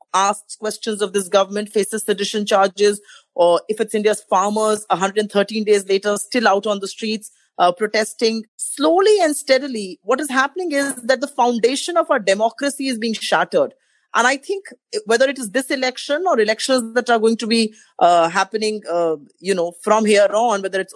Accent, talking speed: Indian, 185 wpm